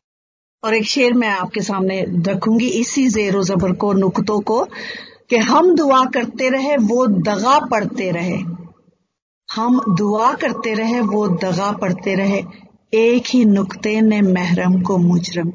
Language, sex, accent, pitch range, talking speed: Hindi, female, native, 200-245 Hz, 145 wpm